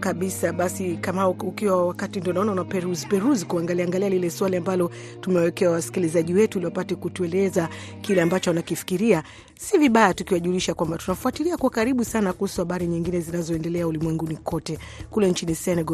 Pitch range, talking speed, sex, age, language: 165-205 Hz, 160 wpm, female, 40-59, Swahili